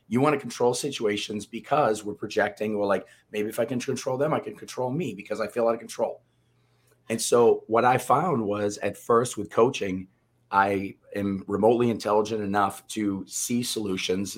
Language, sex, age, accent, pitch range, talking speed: English, male, 30-49, American, 95-115 Hz, 185 wpm